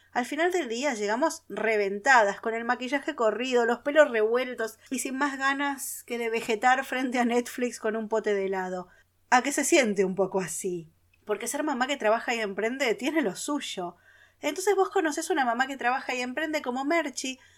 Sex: female